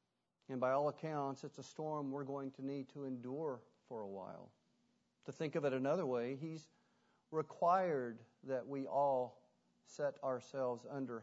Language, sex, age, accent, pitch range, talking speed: English, male, 50-69, American, 120-140 Hz, 160 wpm